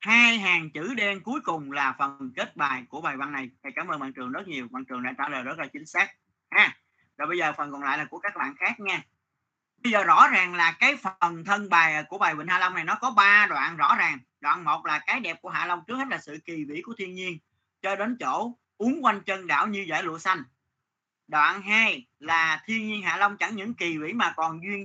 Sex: male